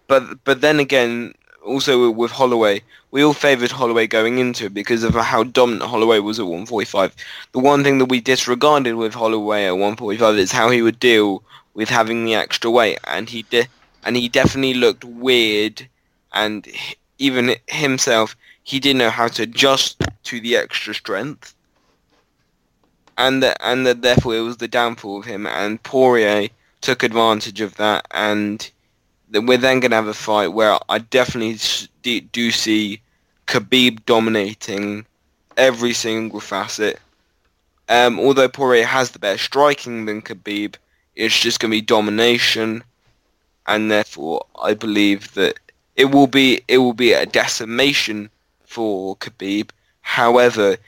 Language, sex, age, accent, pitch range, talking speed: English, male, 10-29, British, 105-125 Hz, 155 wpm